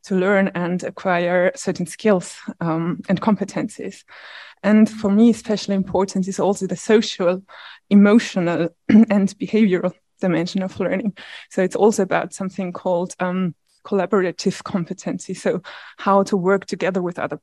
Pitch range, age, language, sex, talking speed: 185-210 Hz, 20-39, German, female, 140 wpm